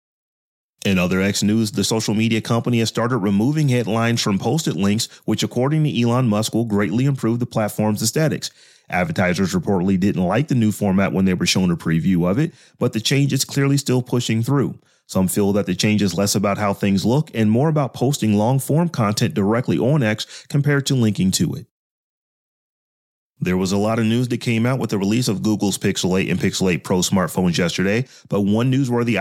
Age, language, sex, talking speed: 30-49, English, male, 205 wpm